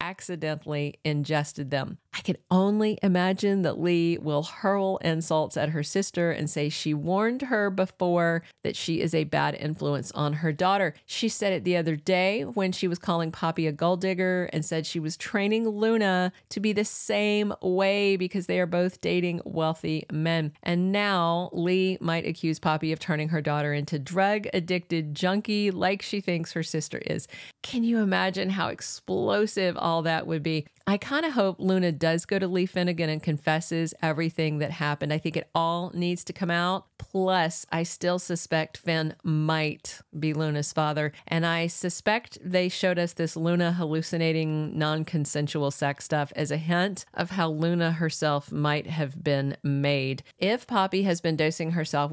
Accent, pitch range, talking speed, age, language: American, 155-185 Hz, 175 wpm, 40-59, English